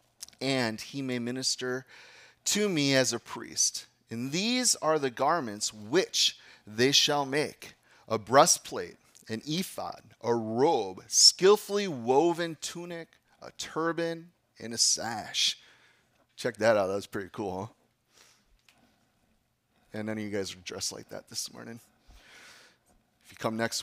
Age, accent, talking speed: 30-49, American, 135 wpm